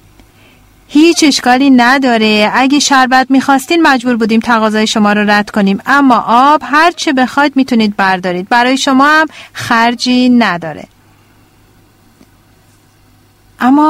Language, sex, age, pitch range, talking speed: Persian, female, 40-59, 205-290 Hz, 110 wpm